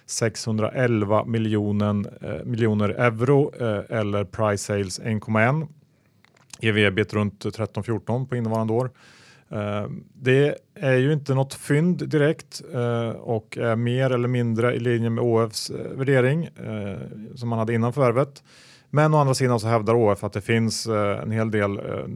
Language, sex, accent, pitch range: Swedish, male, Norwegian, 105-125 Hz